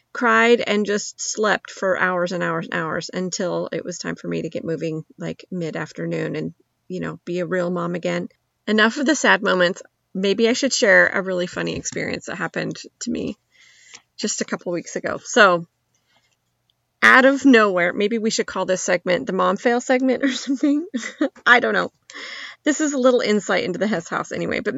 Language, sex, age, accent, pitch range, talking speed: English, female, 30-49, American, 180-230 Hz, 200 wpm